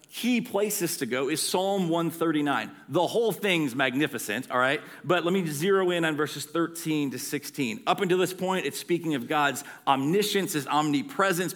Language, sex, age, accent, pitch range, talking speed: English, male, 40-59, American, 130-185 Hz, 175 wpm